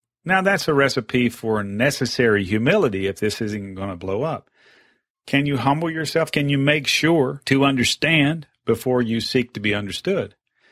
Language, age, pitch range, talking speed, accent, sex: English, 40-59, 105-130 Hz, 170 wpm, American, male